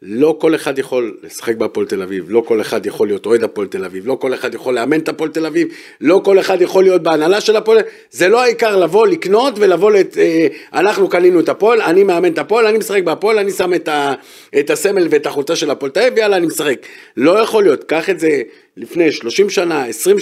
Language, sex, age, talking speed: Hebrew, male, 50-69, 230 wpm